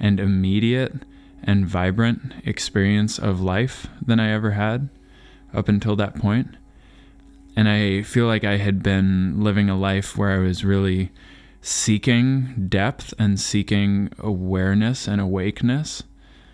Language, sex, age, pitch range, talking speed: English, male, 20-39, 95-110 Hz, 130 wpm